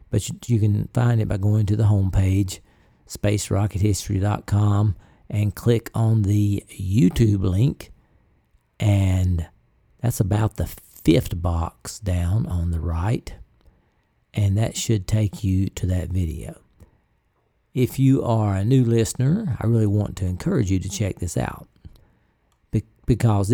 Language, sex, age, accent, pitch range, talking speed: English, male, 50-69, American, 95-120 Hz, 135 wpm